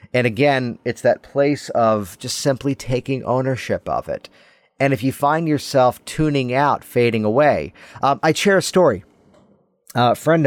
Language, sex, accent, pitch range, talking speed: English, male, American, 100-140 Hz, 165 wpm